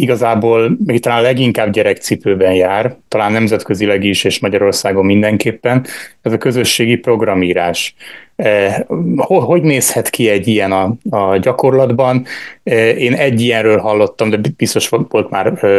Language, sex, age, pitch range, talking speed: Hungarian, male, 30-49, 100-120 Hz, 120 wpm